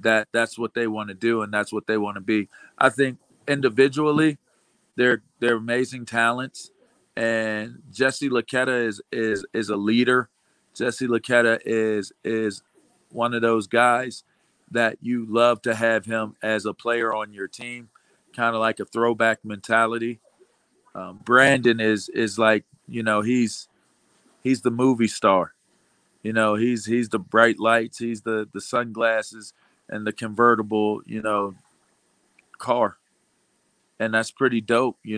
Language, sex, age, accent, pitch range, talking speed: English, male, 40-59, American, 110-120 Hz, 150 wpm